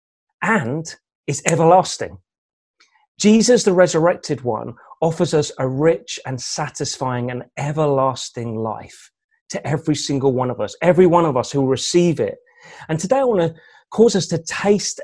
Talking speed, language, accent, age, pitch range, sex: 155 wpm, English, British, 30-49, 135-190 Hz, male